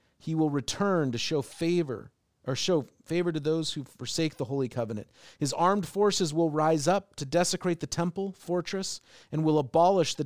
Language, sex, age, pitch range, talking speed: English, male, 40-59, 120-155 Hz, 180 wpm